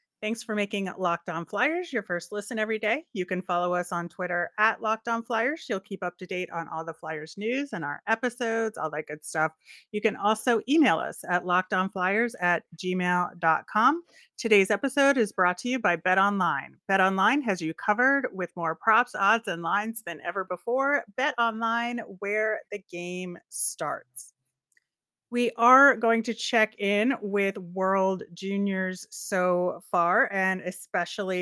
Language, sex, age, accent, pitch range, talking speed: English, female, 30-49, American, 175-220 Hz, 165 wpm